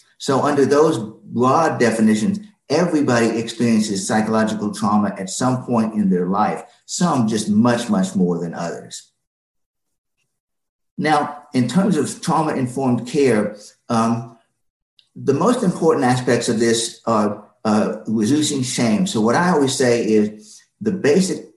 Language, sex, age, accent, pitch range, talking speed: English, male, 50-69, American, 110-165 Hz, 130 wpm